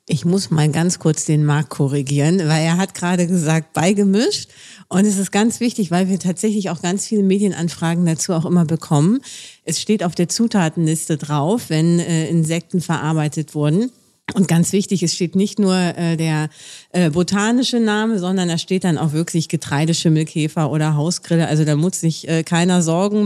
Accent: German